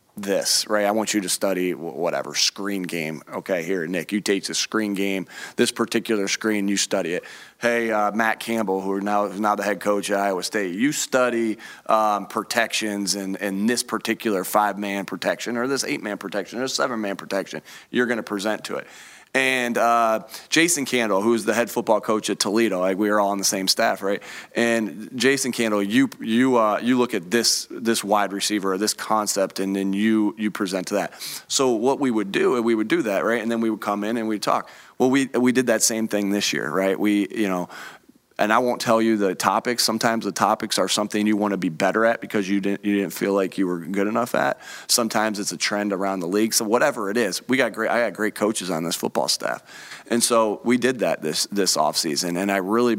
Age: 30-49